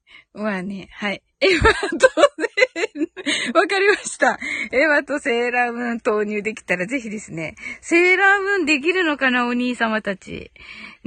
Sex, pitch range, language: female, 205-305 Hz, Japanese